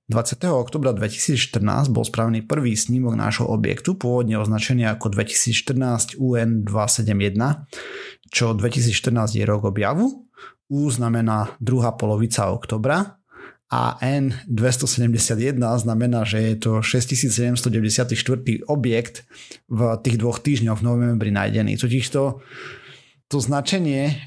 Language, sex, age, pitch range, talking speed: Slovak, male, 30-49, 110-130 Hz, 105 wpm